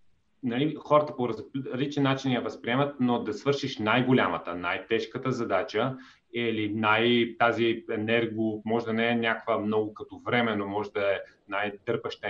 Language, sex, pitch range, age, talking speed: Bulgarian, male, 115-135 Hz, 30-49, 140 wpm